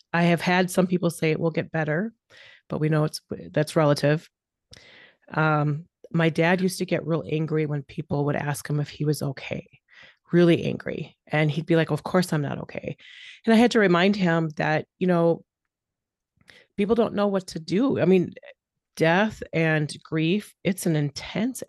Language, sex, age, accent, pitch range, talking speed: English, female, 30-49, American, 155-185 Hz, 185 wpm